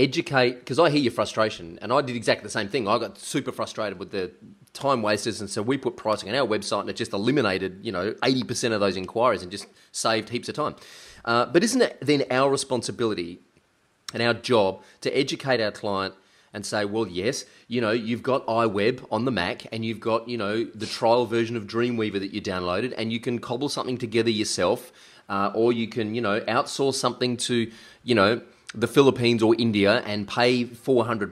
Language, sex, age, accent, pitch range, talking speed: English, male, 30-49, Australian, 110-130 Hz, 210 wpm